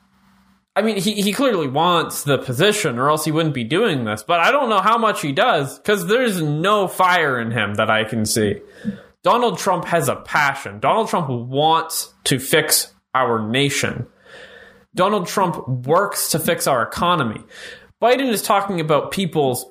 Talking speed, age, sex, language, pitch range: 175 wpm, 20-39, male, English, 150-210 Hz